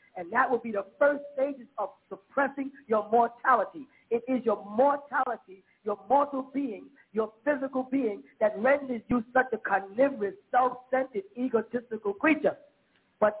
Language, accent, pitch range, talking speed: English, American, 225-280 Hz, 140 wpm